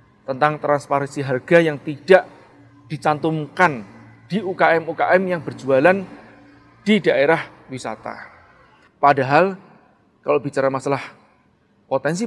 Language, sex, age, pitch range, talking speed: Indonesian, male, 30-49, 135-185 Hz, 90 wpm